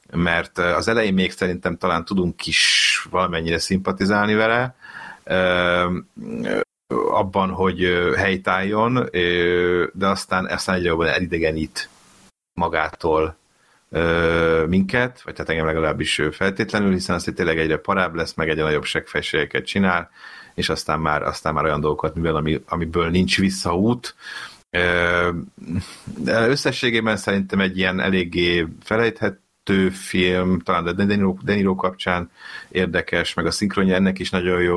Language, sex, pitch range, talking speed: Hungarian, male, 85-100 Hz, 135 wpm